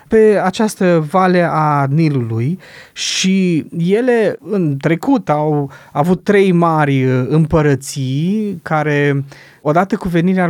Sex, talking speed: male, 105 wpm